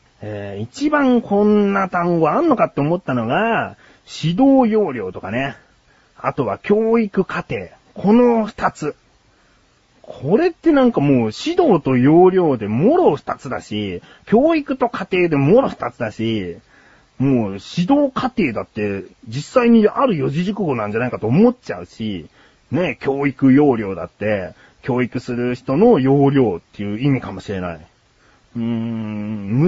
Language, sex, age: Japanese, male, 30-49